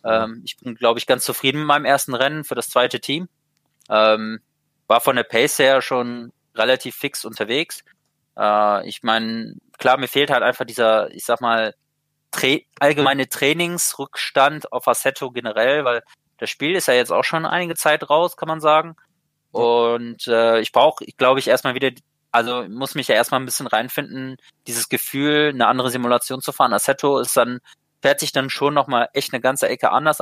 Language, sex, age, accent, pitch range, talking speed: German, male, 20-39, German, 120-145 Hz, 185 wpm